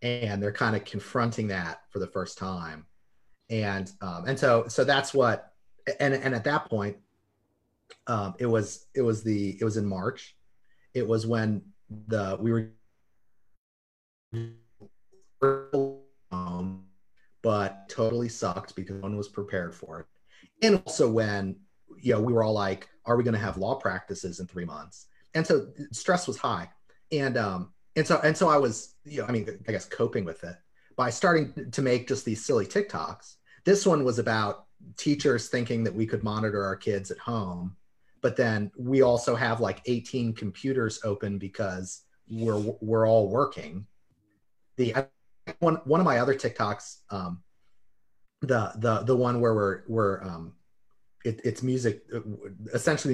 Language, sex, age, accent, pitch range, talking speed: English, male, 30-49, American, 100-125 Hz, 165 wpm